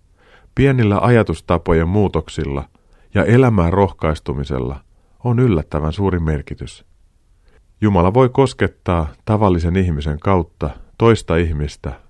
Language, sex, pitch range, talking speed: Finnish, male, 80-100 Hz, 90 wpm